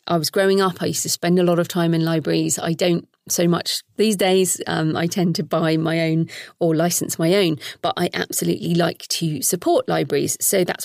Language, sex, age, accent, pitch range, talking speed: English, female, 40-59, British, 170-215 Hz, 220 wpm